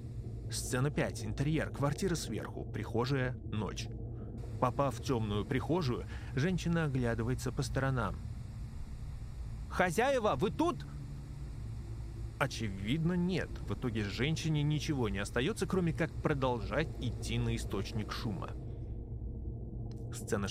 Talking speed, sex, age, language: 100 wpm, male, 30-49, Russian